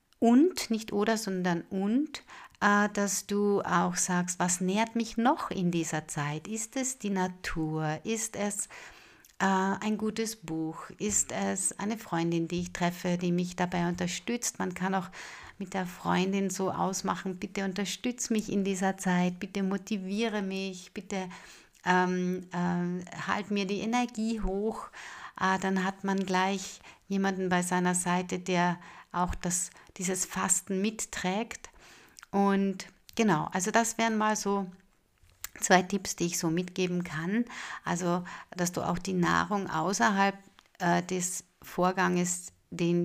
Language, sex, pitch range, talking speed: German, female, 180-205 Hz, 135 wpm